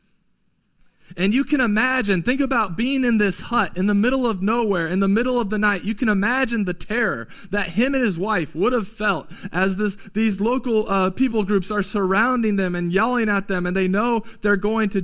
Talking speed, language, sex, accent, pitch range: 210 wpm, English, male, American, 155-210 Hz